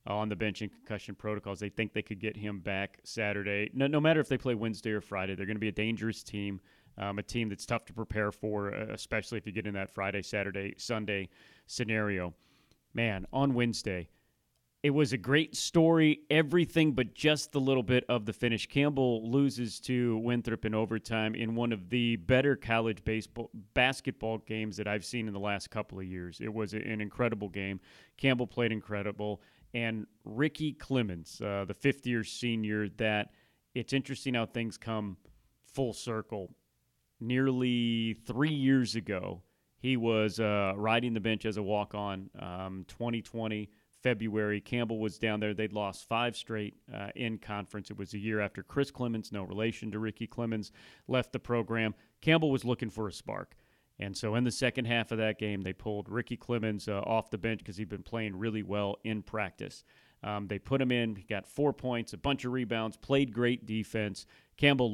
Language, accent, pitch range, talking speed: English, American, 105-120 Hz, 190 wpm